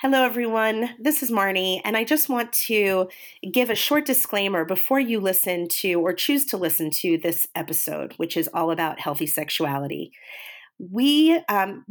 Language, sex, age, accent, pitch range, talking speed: English, female, 40-59, American, 170-230 Hz, 165 wpm